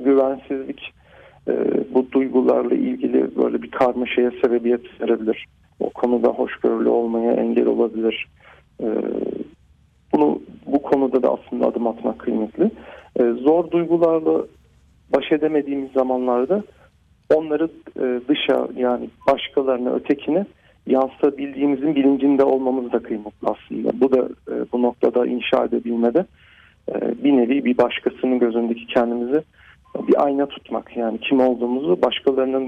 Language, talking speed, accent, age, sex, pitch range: Turkish, 110 wpm, native, 40-59, male, 120-145 Hz